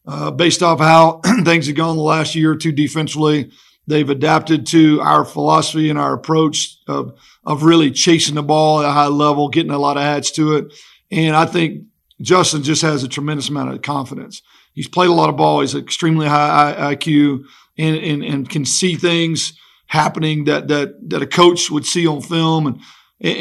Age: 50-69